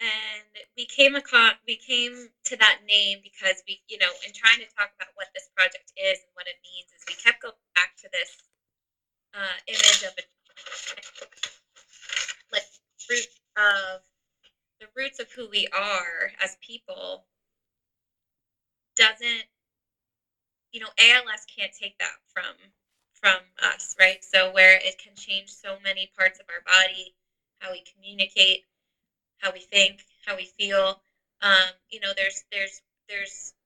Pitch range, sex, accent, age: 190-220 Hz, female, American, 20-39